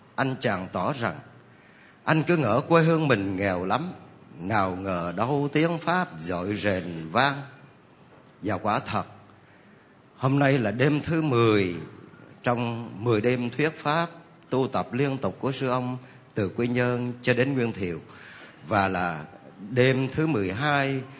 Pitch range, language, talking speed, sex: 100-130 Hz, Vietnamese, 150 wpm, male